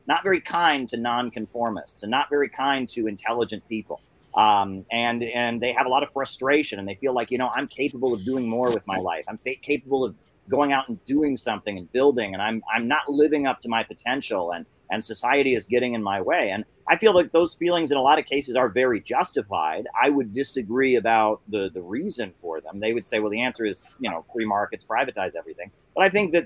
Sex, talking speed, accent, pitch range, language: male, 235 wpm, American, 105-130 Hz, English